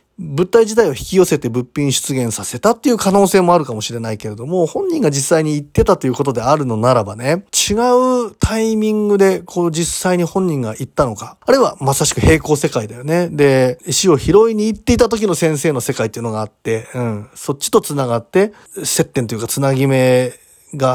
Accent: native